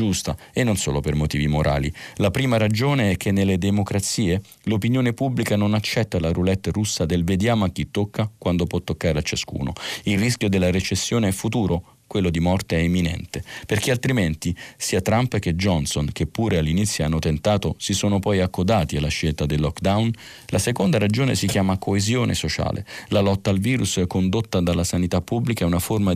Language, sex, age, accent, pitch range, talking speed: Italian, male, 40-59, native, 90-110 Hz, 185 wpm